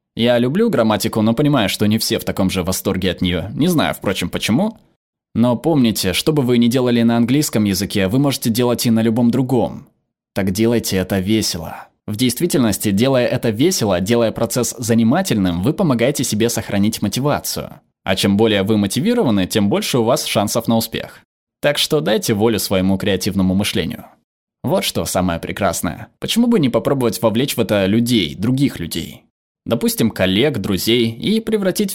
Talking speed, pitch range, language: 170 wpm, 105-125 Hz, Russian